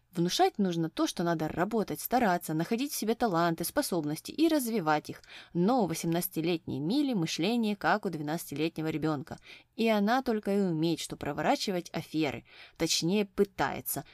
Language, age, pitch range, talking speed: Russian, 20-39, 160-220 Hz, 145 wpm